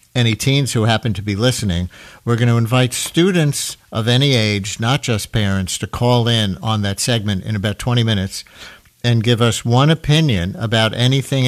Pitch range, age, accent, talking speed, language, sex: 105-135 Hz, 50-69, American, 185 wpm, English, male